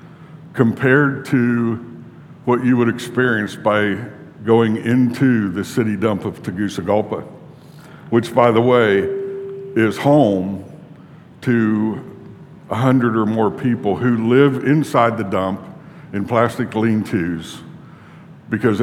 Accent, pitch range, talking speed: American, 110-155 Hz, 110 wpm